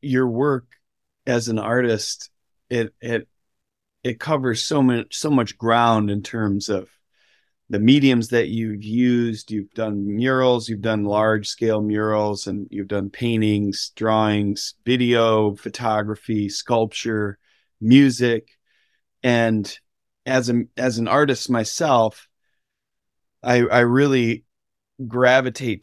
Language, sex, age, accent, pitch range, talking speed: English, male, 40-59, American, 105-120 Hz, 115 wpm